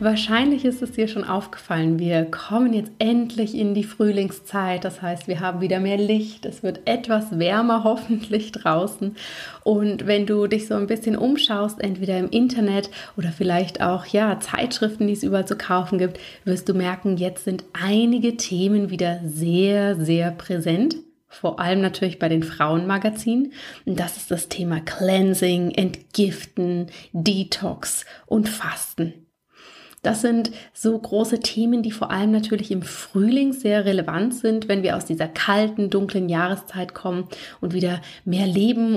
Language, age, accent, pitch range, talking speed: German, 30-49, German, 185-220 Hz, 155 wpm